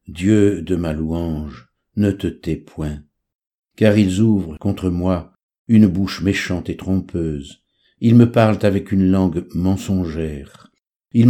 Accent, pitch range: French, 80-105 Hz